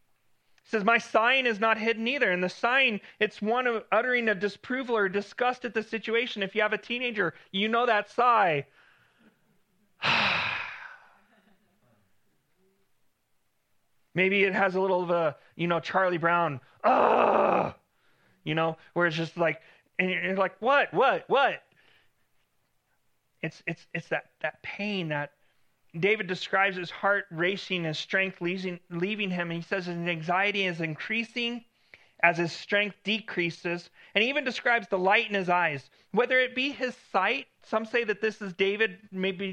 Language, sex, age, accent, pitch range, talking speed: English, male, 30-49, American, 165-215 Hz, 155 wpm